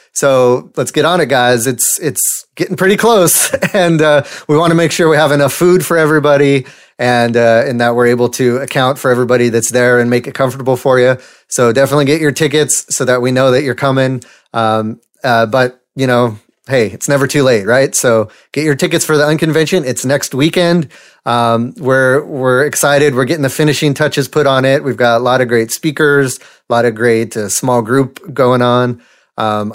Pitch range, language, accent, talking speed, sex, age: 120-140 Hz, English, American, 210 wpm, male, 30-49